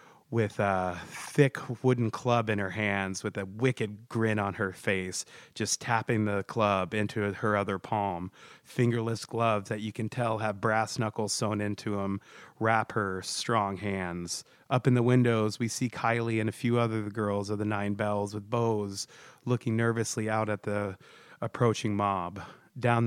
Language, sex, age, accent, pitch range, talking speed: English, male, 30-49, American, 100-120 Hz, 170 wpm